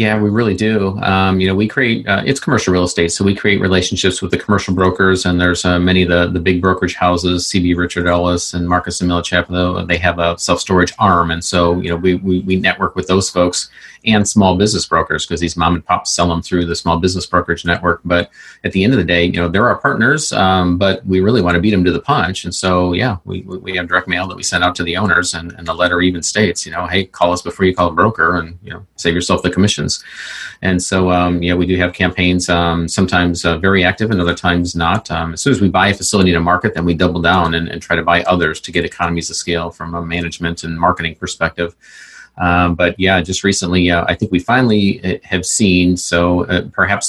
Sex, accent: male, American